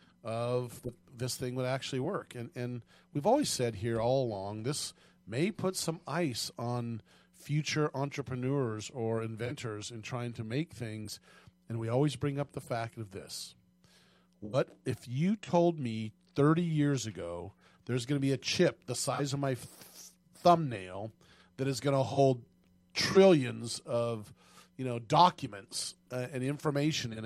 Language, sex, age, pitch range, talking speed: English, male, 40-59, 120-145 Hz, 160 wpm